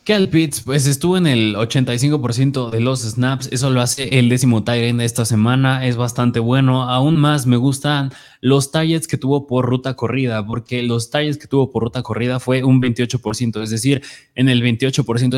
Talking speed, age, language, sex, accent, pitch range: 185 wpm, 20-39, Spanish, male, Mexican, 115-145 Hz